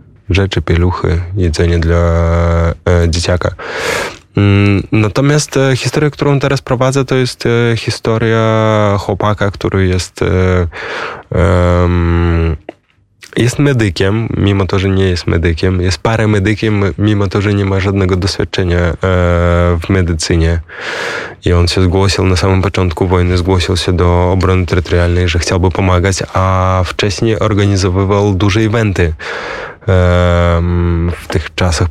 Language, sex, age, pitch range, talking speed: Polish, male, 20-39, 90-110 Hz, 110 wpm